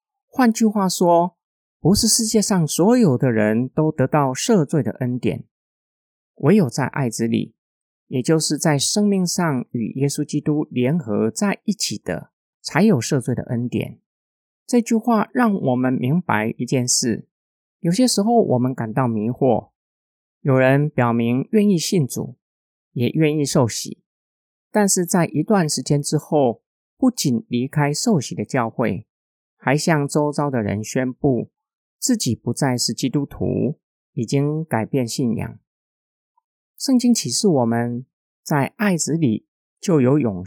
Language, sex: Chinese, male